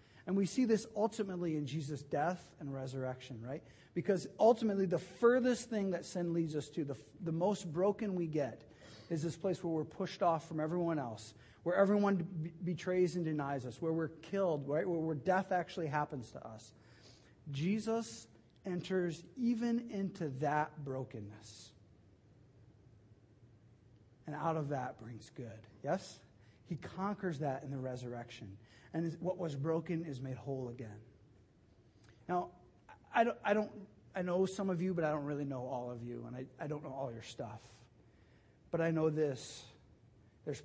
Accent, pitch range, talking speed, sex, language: American, 120-180 Hz, 170 wpm, male, English